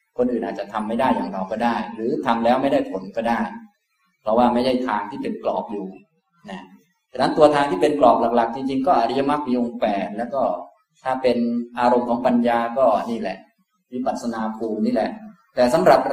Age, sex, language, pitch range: 20-39, male, Thai, 115-165 Hz